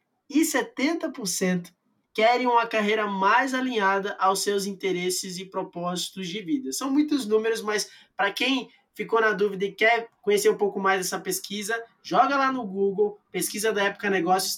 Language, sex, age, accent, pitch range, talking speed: Portuguese, male, 20-39, Brazilian, 195-245 Hz, 160 wpm